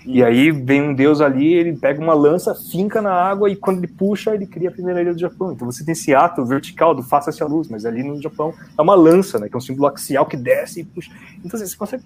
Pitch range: 125-180 Hz